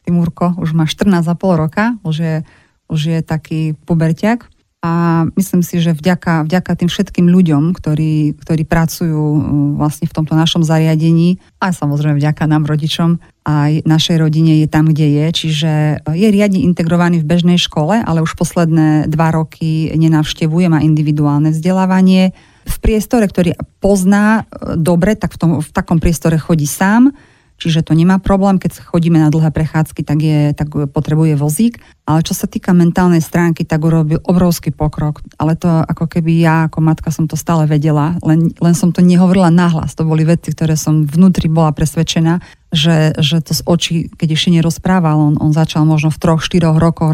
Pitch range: 155-175 Hz